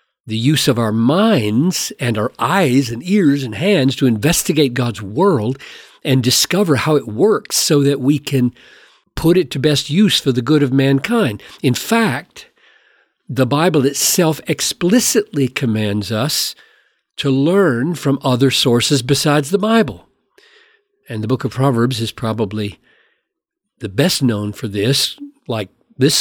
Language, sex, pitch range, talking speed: English, male, 130-190 Hz, 150 wpm